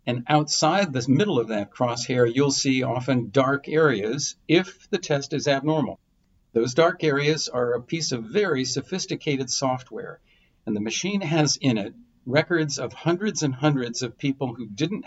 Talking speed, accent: 165 wpm, American